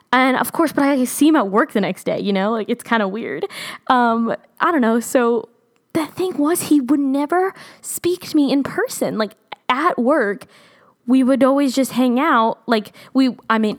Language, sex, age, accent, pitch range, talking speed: English, female, 10-29, American, 200-270 Hz, 205 wpm